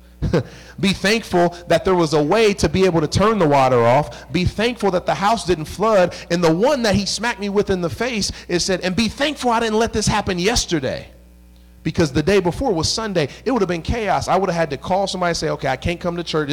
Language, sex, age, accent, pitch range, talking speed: English, male, 30-49, American, 155-205 Hz, 250 wpm